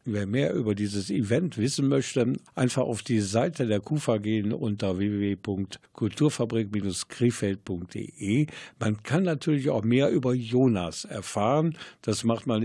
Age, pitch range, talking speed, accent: 50-69, 95-120 Hz, 130 wpm, German